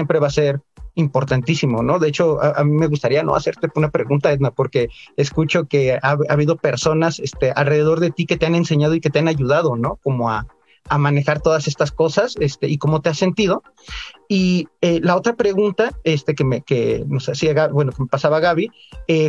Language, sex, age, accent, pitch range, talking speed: Spanish, male, 40-59, Mexican, 140-175 Hz, 215 wpm